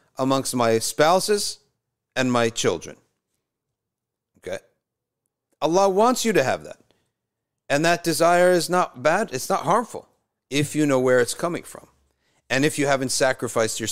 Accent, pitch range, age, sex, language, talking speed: American, 110-155 Hz, 40-59, male, English, 150 wpm